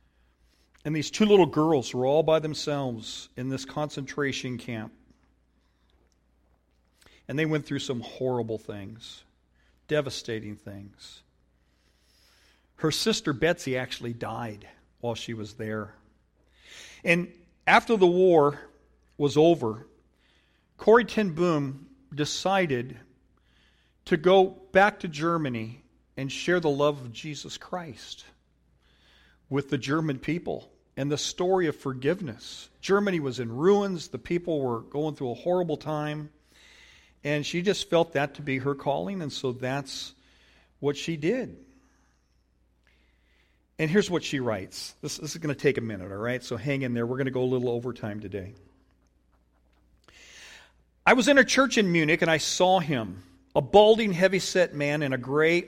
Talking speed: 145 wpm